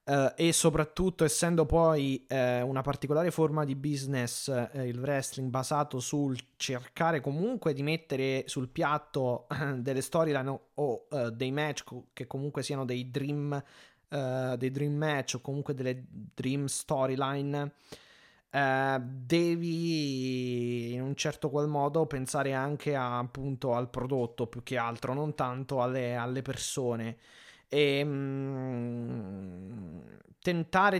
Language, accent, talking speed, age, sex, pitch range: Italian, native, 130 wpm, 20-39, male, 130-150 Hz